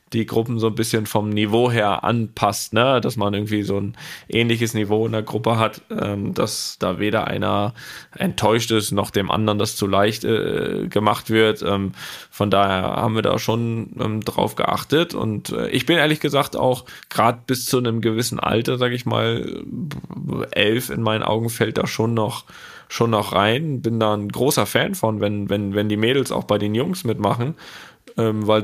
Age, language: 10-29, German